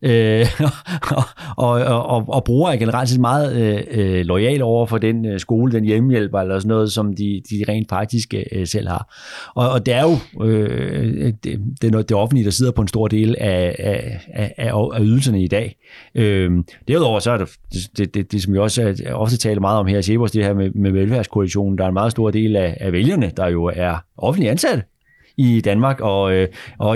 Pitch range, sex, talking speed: 105-135 Hz, male, 225 wpm